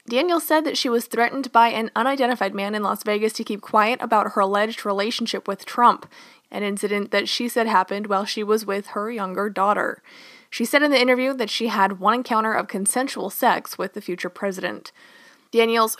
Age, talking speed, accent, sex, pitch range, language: 20-39, 200 wpm, American, female, 200-240 Hz, English